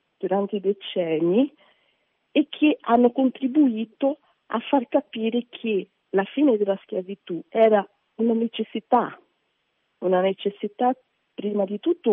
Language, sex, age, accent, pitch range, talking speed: Italian, female, 40-59, native, 185-240 Hz, 110 wpm